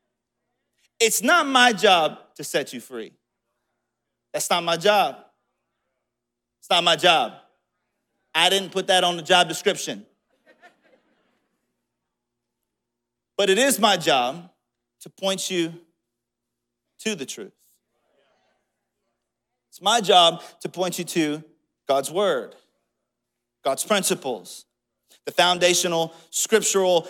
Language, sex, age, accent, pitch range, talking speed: English, male, 30-49, American, 165-210 Hz, 110 wpm